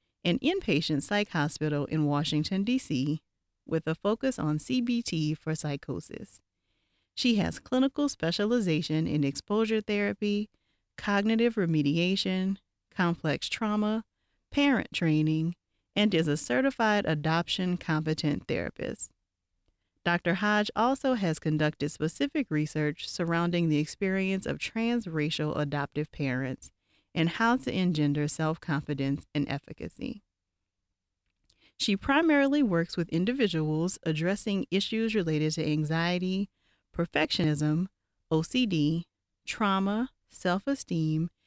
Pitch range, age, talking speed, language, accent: 150-205 Hz, 40-59, 100 wpm, English, American